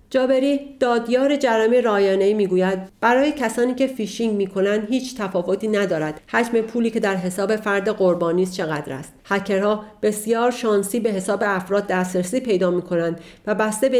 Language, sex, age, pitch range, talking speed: Persian, female, 40-59, 190-230 Hz, 150 wpm